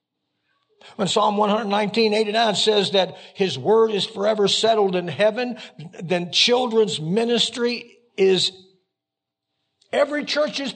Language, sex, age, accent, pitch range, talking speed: English, male, 60-79, American, 160-230 Hz, 130 wpm